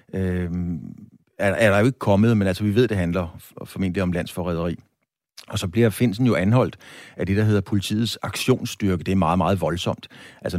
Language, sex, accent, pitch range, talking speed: Danish, male, native, 95-115 Hz, 185 wpm